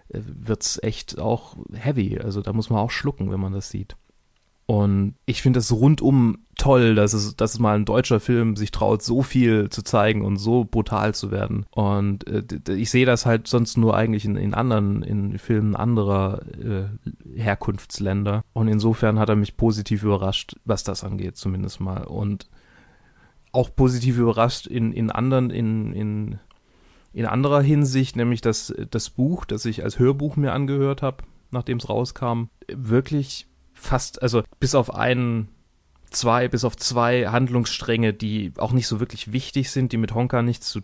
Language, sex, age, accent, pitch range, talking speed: German, male, 30-49, German, 105-125 Hz, 175 wpm